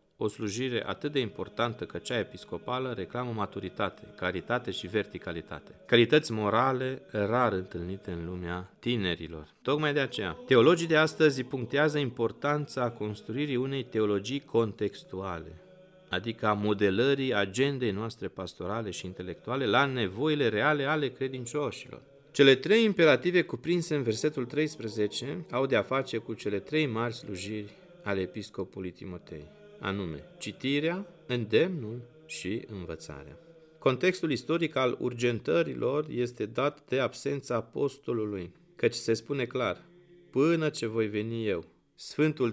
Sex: male